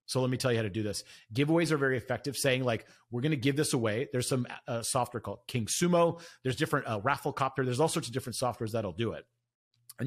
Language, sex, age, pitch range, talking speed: English, male, 30-49, 115-155 Hz, 255 wpm